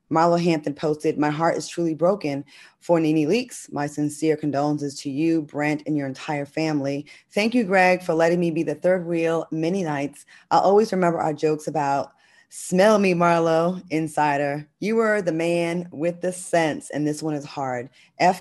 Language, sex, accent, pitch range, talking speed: English, female, American, 150-175 Hz, 185 wpm